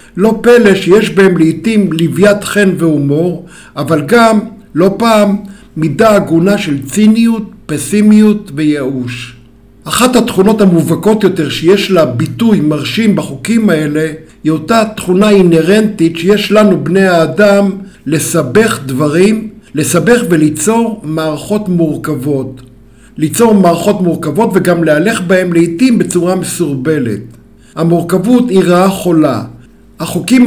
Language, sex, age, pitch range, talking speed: Hebrew, male, 60-79, 155-205 Hz, 110 wpm